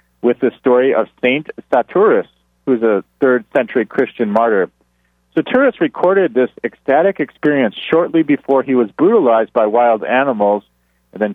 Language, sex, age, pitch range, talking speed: English, male, 40-59, 95-145 Hz, 150 wpm